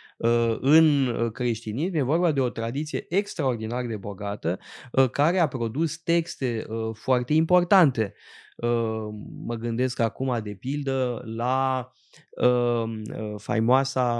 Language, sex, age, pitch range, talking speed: Romanian, male, 20-39, 115-145 Hz, 95 wpm